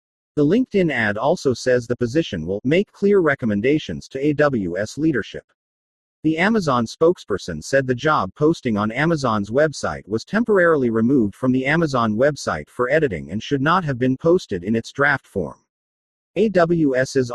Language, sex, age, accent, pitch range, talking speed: English, male, 40-59, American, 115-160 Hz, 150 wpm